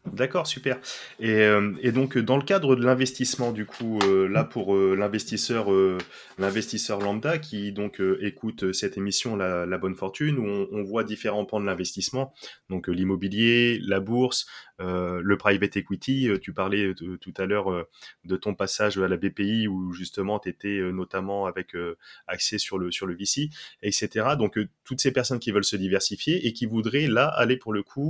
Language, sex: French, male